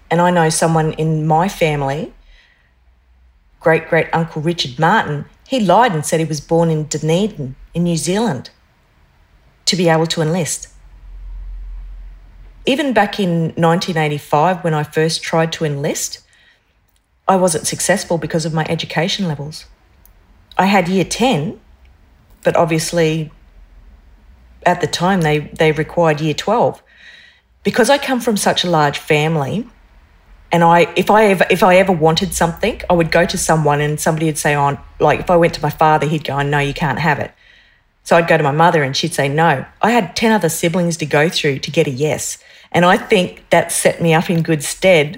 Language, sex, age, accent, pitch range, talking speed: English, female, 40-59, Australian, 150-175 Hz, 180 wpm